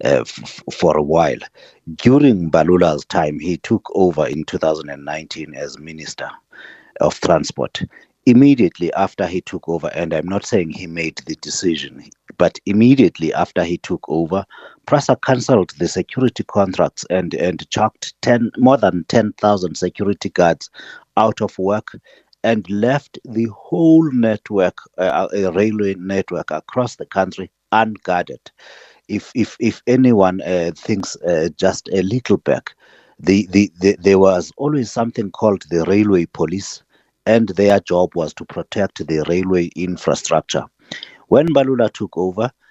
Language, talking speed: English, 140 wpm